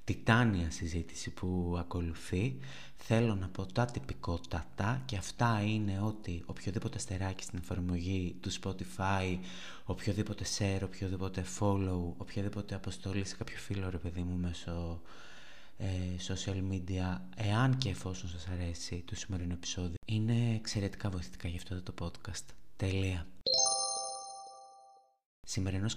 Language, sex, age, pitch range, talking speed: Greek, male, 20-39, 90-105 Hz, 120 wpm